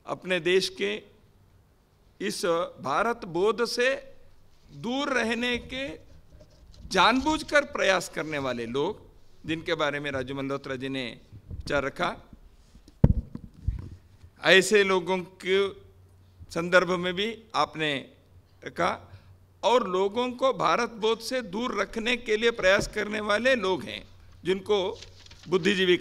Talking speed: 110 wpm